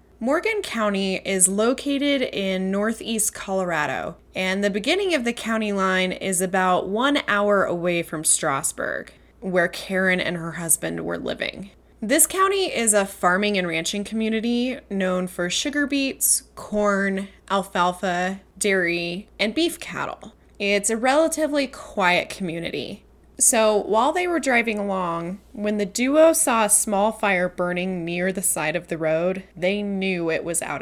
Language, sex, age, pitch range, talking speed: English, female, 20-39, 180-235 Hz, 150 wpm